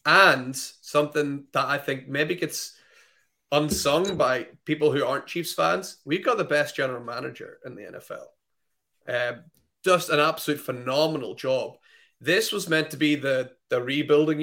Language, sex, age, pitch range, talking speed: English, male, 30-49, 130-165 Hz, 155 wpm